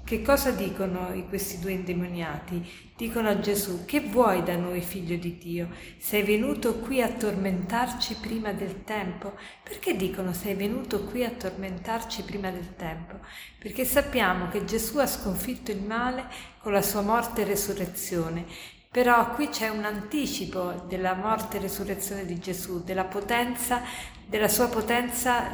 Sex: female